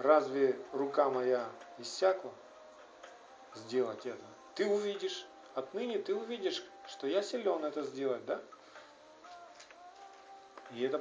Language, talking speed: Russian, 105 wpm